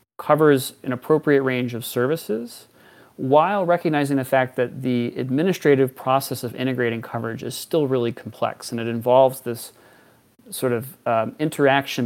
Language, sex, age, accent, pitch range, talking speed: English, male, 30-49, American, 120-145 Hz, 145 wpm